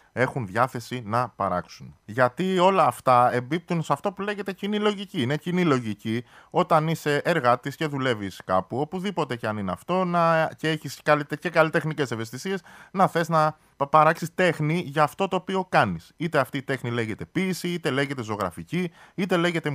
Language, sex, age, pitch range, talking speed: Greek, male, 20-39, 135-185 Hz, 170 wpm